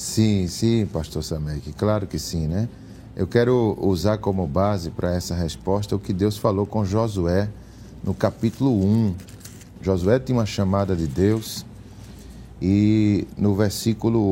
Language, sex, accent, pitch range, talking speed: Portuguese, male, Brazilian, 95-120 Hz, 145 wpm